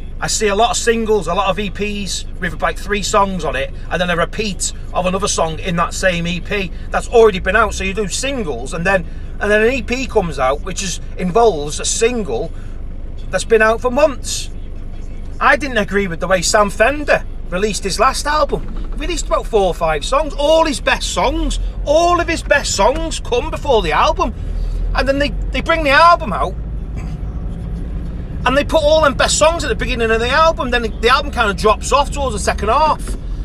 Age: 30-49